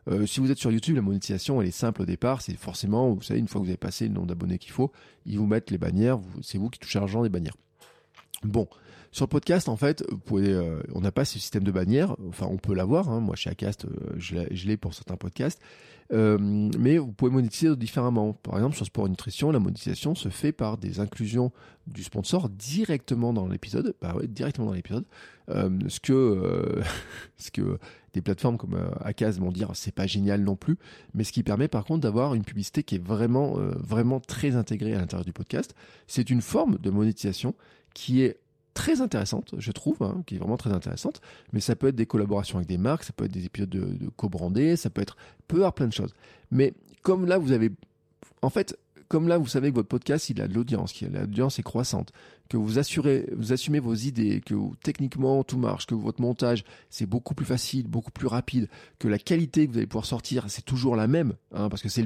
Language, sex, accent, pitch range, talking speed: French, male, French, 100-130 Hz, 230 wpm